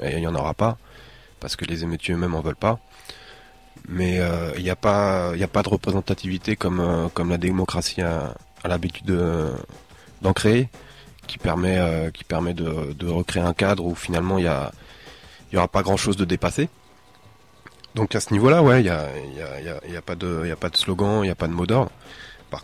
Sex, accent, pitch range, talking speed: male, French, 85-100 Hz, 195 wpm